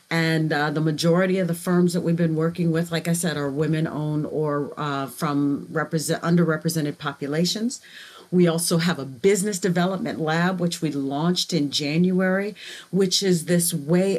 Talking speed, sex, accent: 160 wpm, female, American